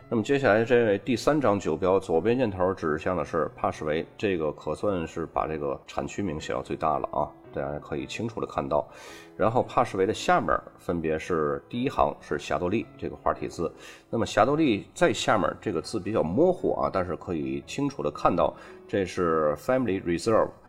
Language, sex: Chinese, male